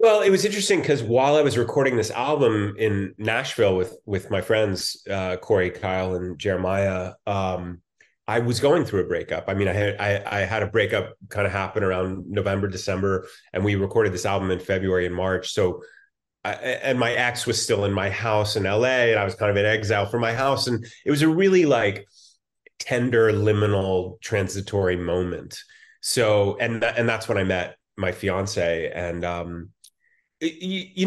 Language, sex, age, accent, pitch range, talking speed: English, male, 30-49, American, 95-125 Hz, 185 wpm